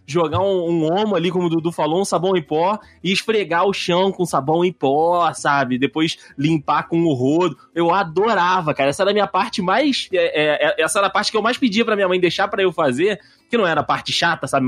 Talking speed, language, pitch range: 235 wpm, Portuguese, 135-190 Hz